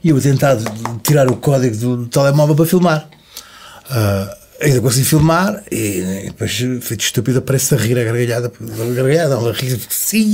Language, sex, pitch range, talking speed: Portuguese, male, 115-160 Hz, 185 wpm